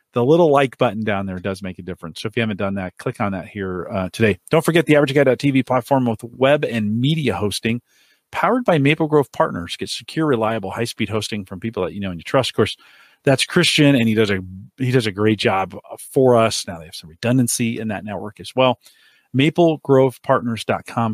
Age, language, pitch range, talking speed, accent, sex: 40-59, English, 105-140 Hz, 215 wpm, American, male